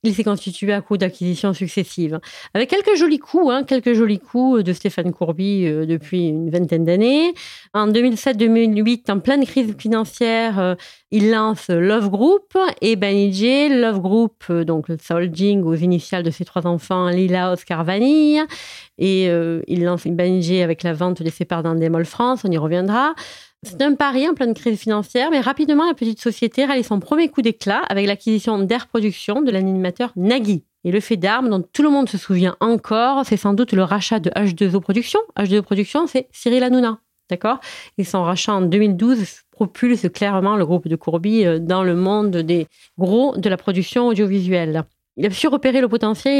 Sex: female